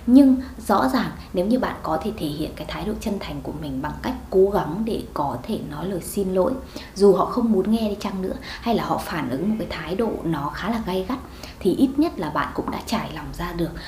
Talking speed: 265 wpm